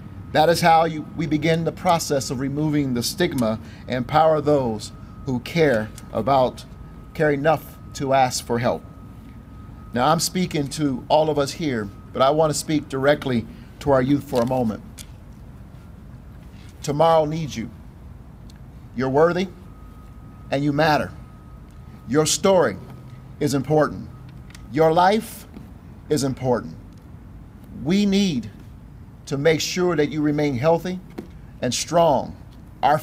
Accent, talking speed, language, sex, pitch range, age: American, 130 wpm, English, male, 125-165 Hz, 50-69